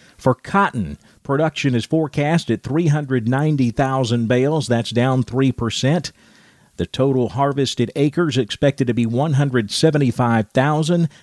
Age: 40-59